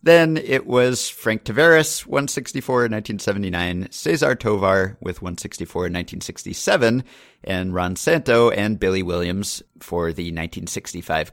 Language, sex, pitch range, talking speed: English, male, 90-120 Hz, 100 wpm